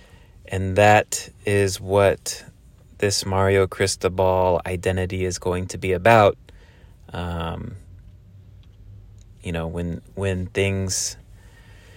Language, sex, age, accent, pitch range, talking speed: English, male, 30-49, American, 95-110 Hz, 95 wpm